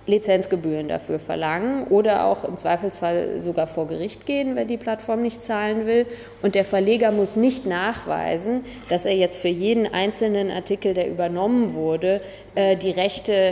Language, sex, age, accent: German, female, 30-49, German